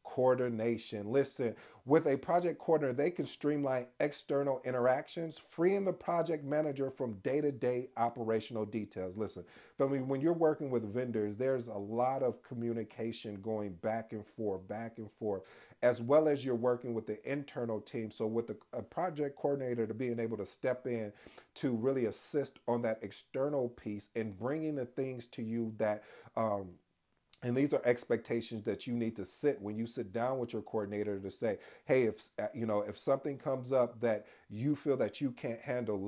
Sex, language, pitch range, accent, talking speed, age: male, English, 110-135 Hz, American, 180 wpm, 40-59